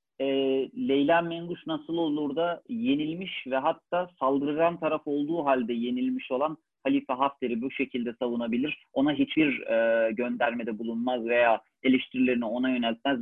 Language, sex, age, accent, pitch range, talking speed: Turkish, male, 40-59, native, 125-160 Hz, 130 wpm